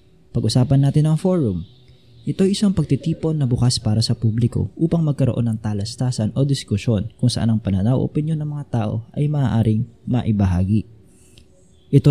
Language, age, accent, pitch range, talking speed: Filipino, 20-39, native, 115-140 Hz, 150 wpm